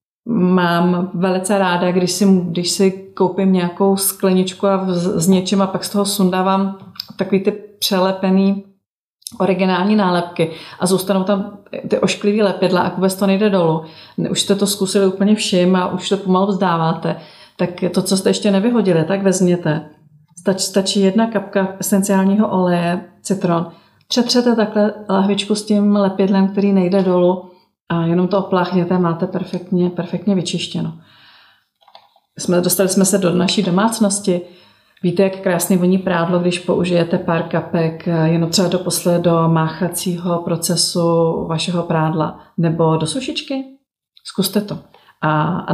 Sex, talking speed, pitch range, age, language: female, 145 wpm, 175-195 Hz, 30-49, Czech